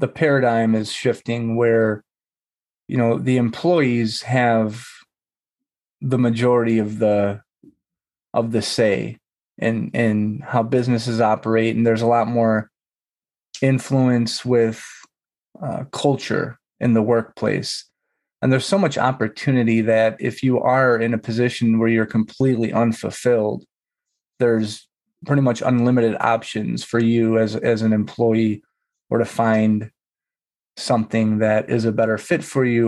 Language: English